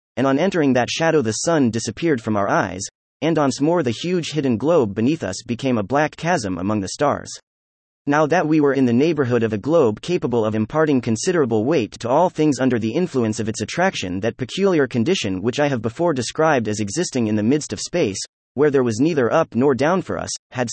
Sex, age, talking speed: male, 30-49, 220 wpm